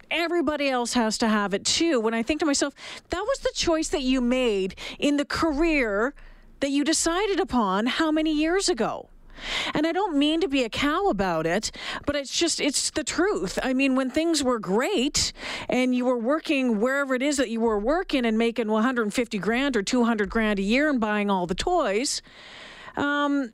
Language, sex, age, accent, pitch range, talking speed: English, female, 40-59, American, 220-300 Hz, 200 wpm